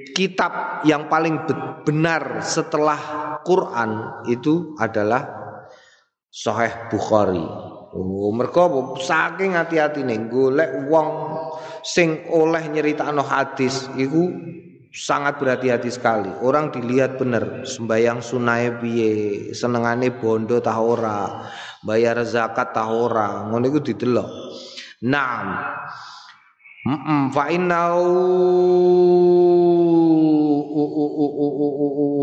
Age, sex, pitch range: 30-49, male, 120-170 Hz